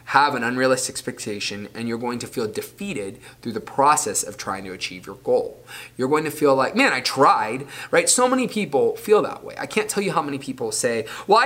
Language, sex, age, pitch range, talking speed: English, male, 20-39, 115-150 Hz, 225 wpm